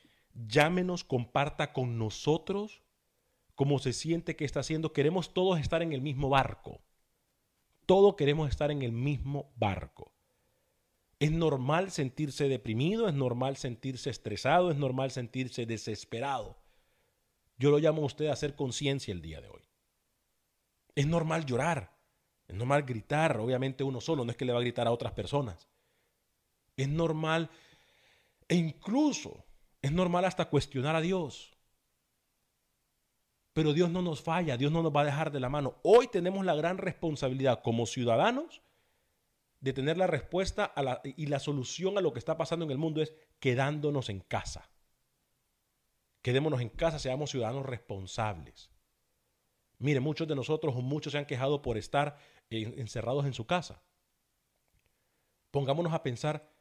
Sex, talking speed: male, 155 wpm